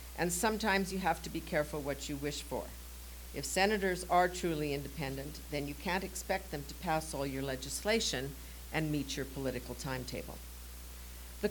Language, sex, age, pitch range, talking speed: English, female, 50-69, 130-175 Hz, 165 wpm